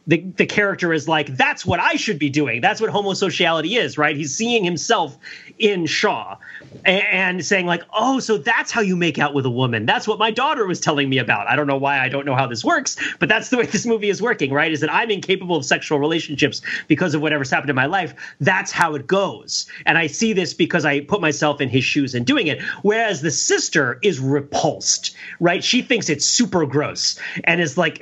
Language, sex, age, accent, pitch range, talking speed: English, male, 30-49, American, 145-200 Hz, 230 wpm